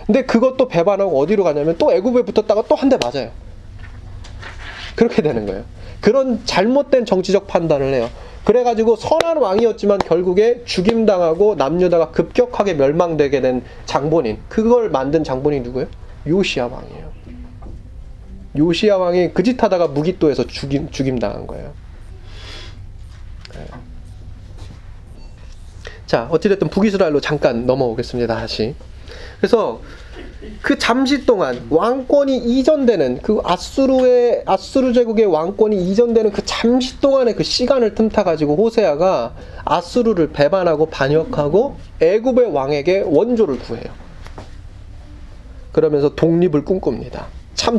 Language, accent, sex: Korean, native, male